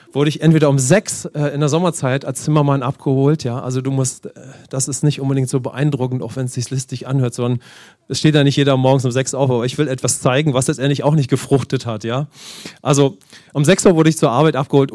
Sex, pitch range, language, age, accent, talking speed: male, 130-155 Hz, English, 40-59, German, 240 wpm